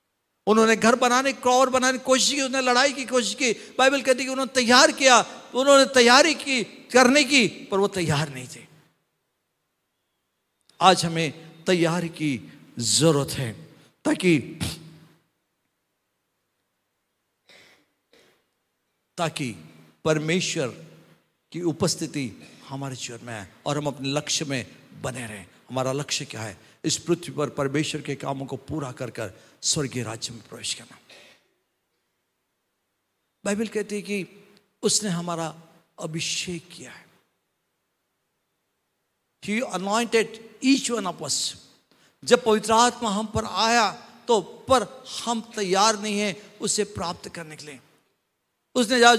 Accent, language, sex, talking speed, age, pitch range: native, Hindi, male, 115 wpm, 50-69, 155-255 Hz